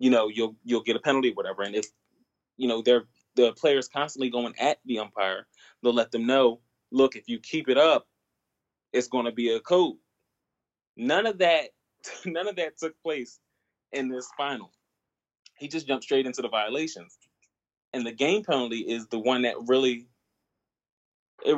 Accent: American